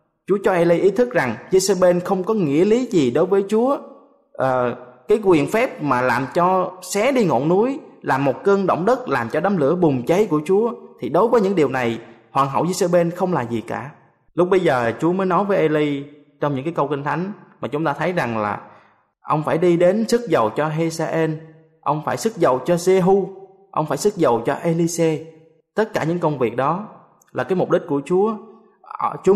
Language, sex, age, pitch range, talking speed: Vietnamese, male, 20-39, 135-190 Hz, 220 wpm